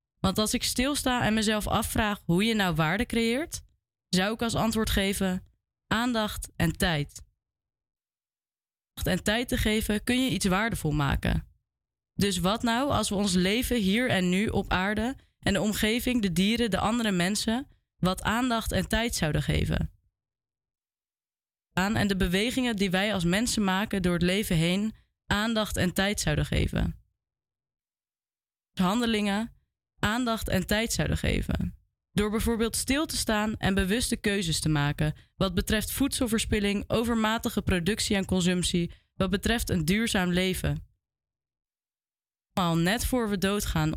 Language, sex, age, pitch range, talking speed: Dutch, female, 20-39, 180-225 Hz, 145 wpm